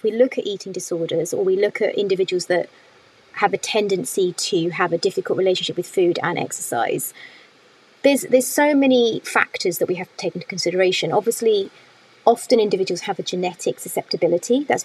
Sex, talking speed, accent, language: female, 175 wpm, British, English